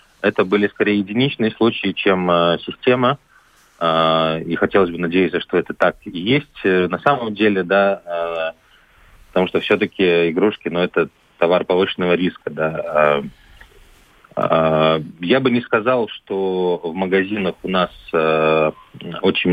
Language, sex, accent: Russian, male, native